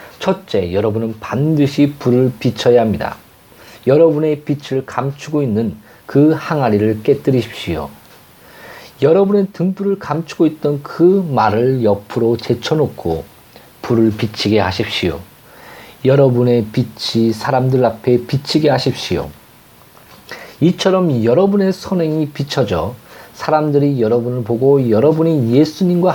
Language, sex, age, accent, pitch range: Korean, male, 40-59, native, 120-170 Hz